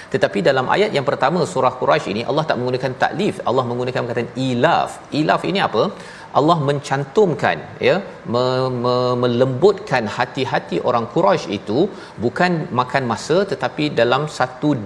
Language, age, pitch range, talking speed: Malayalam, 40-59, 120-145 Hz, 140 wpm